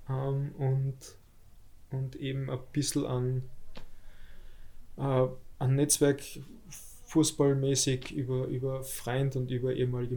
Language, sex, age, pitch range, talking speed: German, male, 20-39, 115-130 Hz, 95 wpm